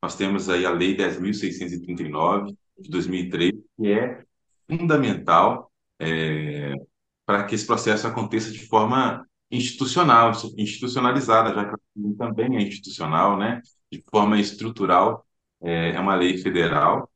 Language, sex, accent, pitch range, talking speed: Portuguese, male, Brazilian, 90-115 Hz, 120 wpm